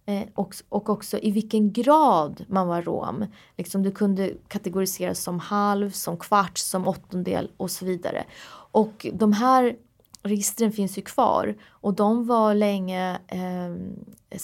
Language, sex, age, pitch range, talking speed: Swedish, female, 20-39, 185-230 Hz, 140 wpm